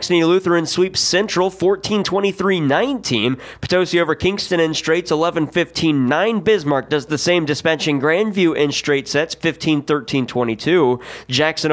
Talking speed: 115 wpm